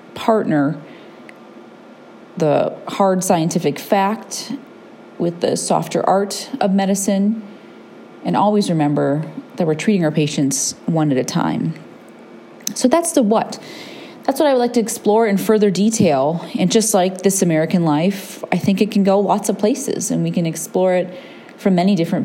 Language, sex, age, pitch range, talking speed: English, female, 30-49, 170-220 Hz, 160 wpm